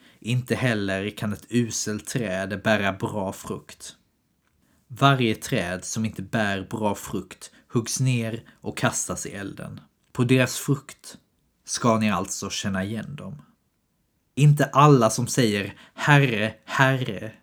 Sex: male